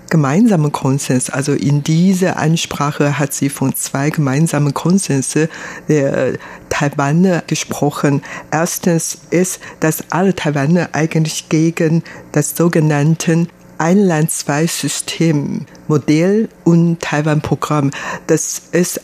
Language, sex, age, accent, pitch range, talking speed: German, female, 60-79, German, 145-170 Hz, 100 wpm